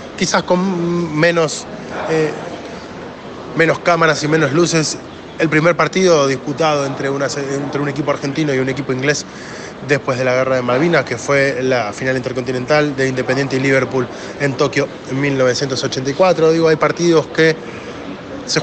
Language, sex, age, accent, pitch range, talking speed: Spanish, male, 20-39, Argentinian, 130-155 Hz, 150 wpm